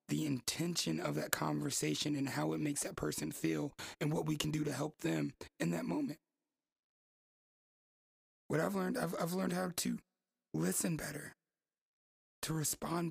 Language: English